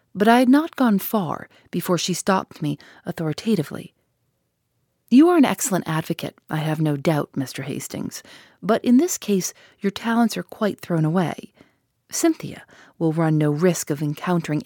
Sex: female